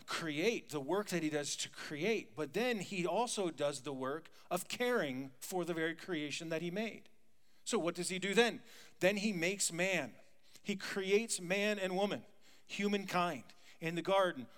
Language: English